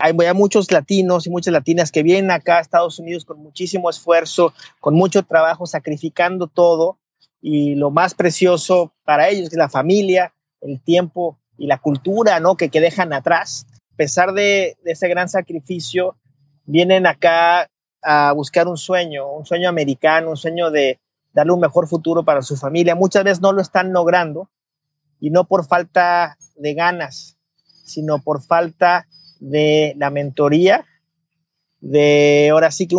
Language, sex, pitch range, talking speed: Spanish, male, 150-180 Hz, 160 wpm